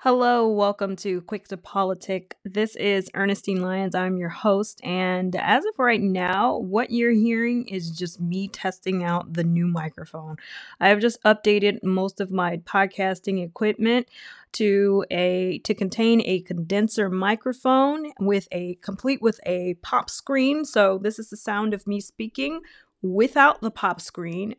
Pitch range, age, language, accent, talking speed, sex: 180-225 Hz, 30-49, English, American, 155 wpm, female